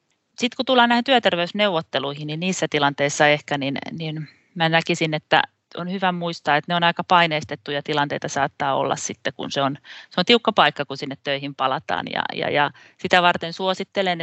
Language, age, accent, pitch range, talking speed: Finnish, 30-49, native, 145-170 Hz, 180 wpm